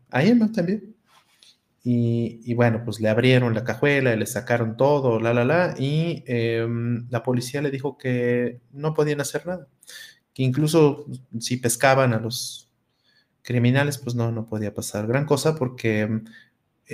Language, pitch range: Spanish, 115-130 Hz